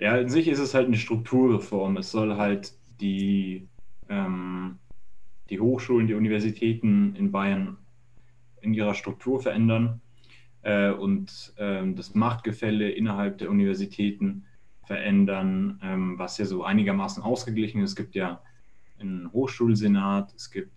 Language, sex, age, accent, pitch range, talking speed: German, male, 30-49, German, 95-120 Hz, 130 wpm